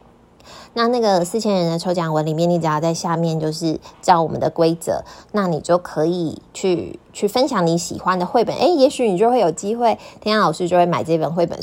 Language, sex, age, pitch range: Chinese, female, 20-39, 165-200 Hz